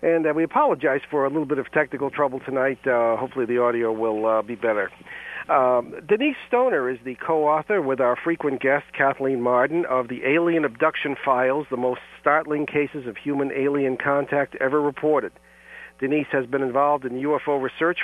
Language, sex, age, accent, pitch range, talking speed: English, male, 50-69, American, 130-150 Hz, 175 wpm